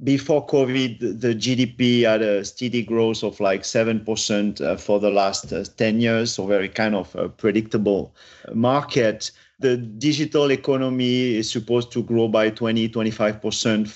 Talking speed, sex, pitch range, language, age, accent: 140 wpm, male, 110-125 Hz, English, 40-59, French